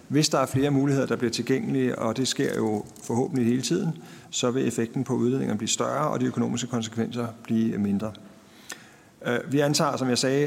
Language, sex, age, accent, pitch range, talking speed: Danish, male, 50-69, native, 115-135 Hz, 190 wpm